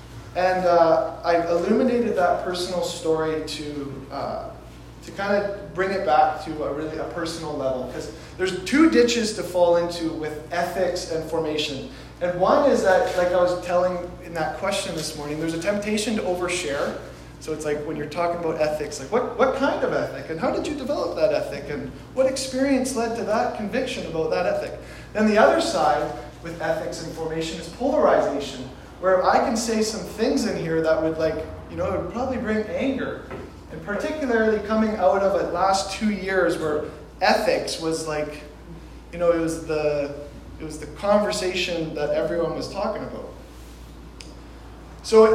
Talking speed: 180 wpm